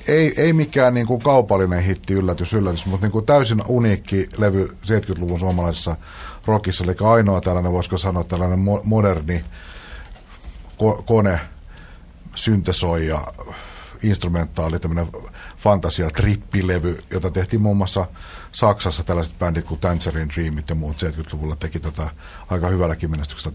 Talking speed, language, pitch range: 130 wpm, Finnish, 80-105 Hz